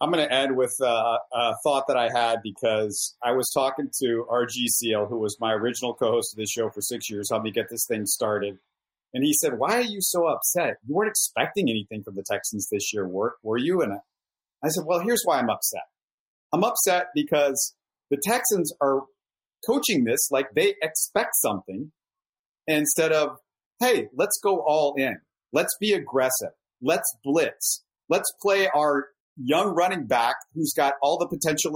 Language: English